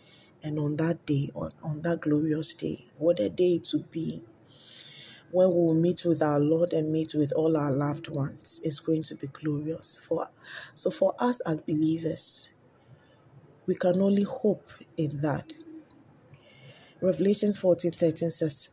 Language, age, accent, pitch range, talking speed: English, 20-39, Nigerian, 145-180 Hz, 155 wpm